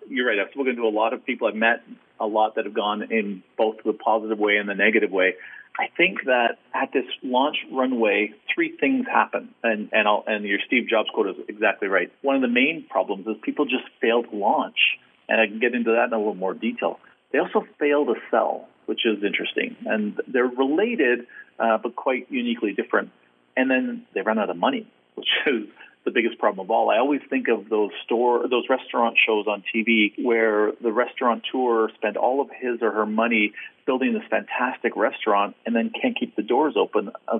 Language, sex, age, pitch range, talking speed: English, male, 40-59, 110-150 Hz, 210 wpm